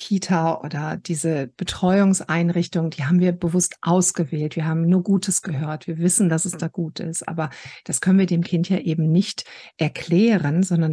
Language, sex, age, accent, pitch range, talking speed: German, female, 50-69, German, 165-190 Hz, 175 wpm